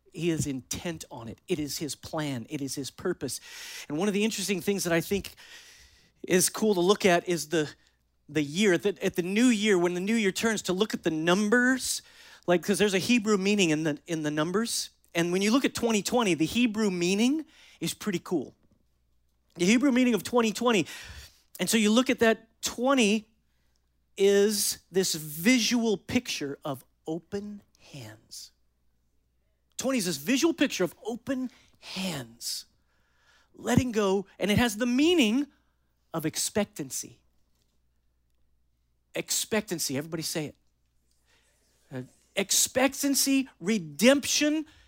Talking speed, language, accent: 145 wpm, English, American